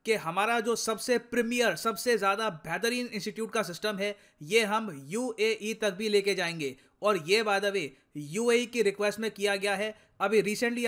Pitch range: 195-220 Hz